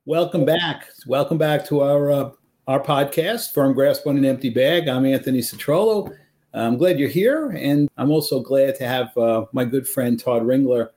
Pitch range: 135-170 Hz